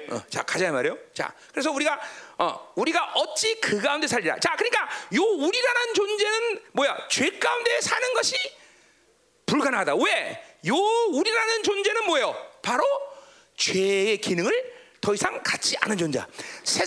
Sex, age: male, 40-59